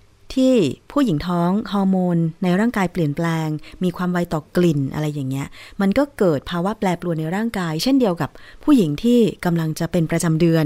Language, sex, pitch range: Thai, female, 155-200 Hz